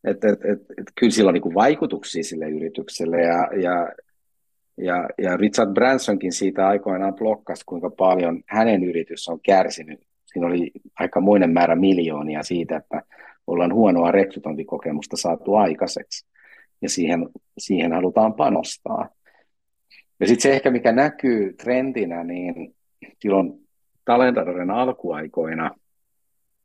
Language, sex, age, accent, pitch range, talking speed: Finnish, male, 50-69, native, 90-120 Hz, 115 wpm